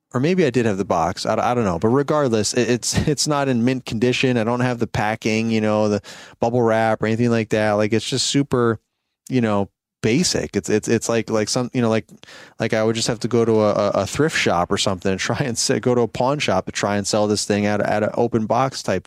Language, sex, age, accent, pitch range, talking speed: English, male, 30-49, American, 105-135 Hz, 265 wpm